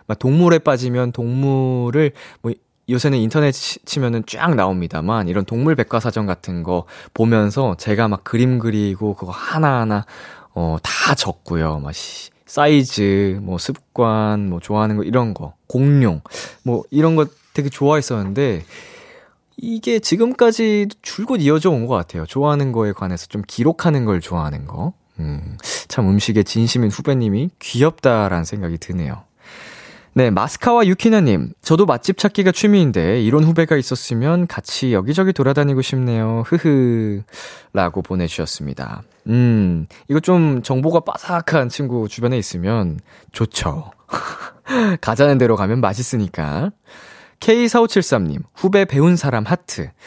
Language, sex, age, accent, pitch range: Korean, male, 20-39, native, 105-155 Hz